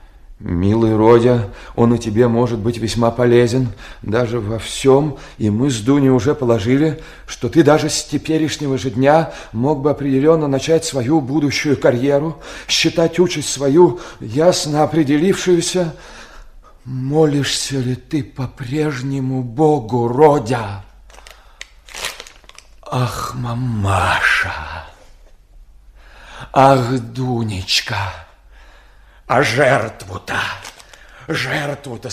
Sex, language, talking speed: male, Russian, 95 wpm